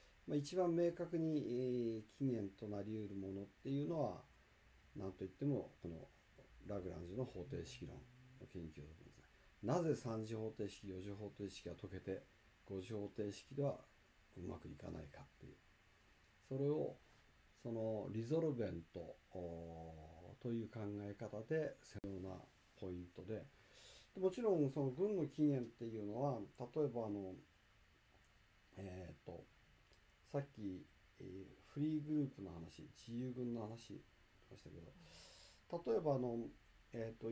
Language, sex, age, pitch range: Japanese, male, 40-59, 100-140 Hz